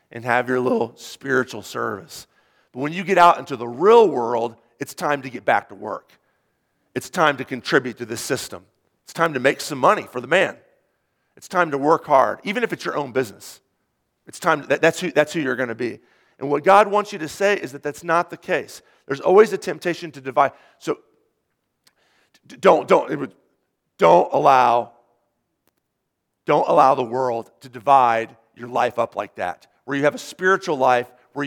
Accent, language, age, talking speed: American, English, 40-59, 200 wpm